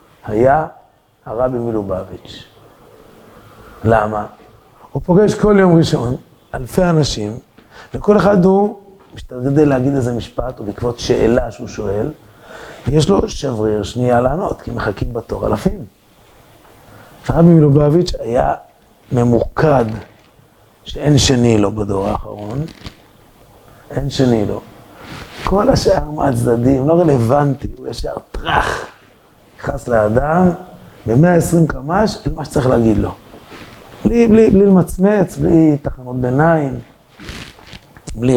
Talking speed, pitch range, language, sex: 105 wpm, 110-150 Hz, Hebrew, male